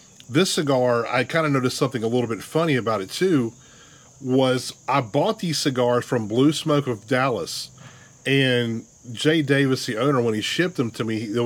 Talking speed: 190 wpm